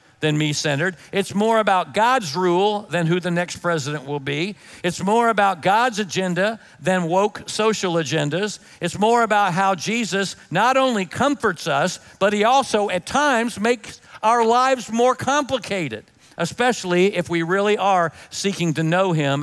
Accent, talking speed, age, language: American, 160 wpm, 50-69, English